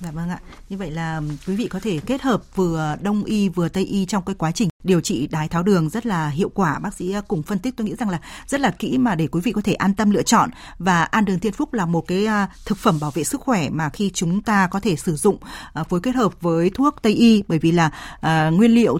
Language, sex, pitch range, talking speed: Vietnamese, female, 170-220 Hz, 270 wpm